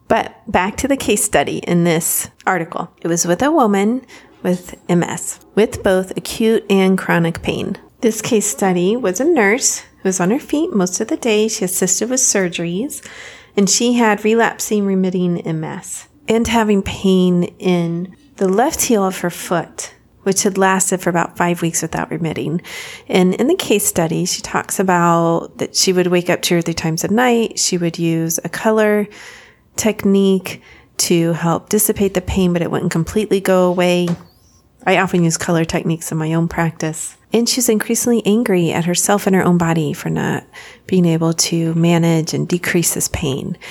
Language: English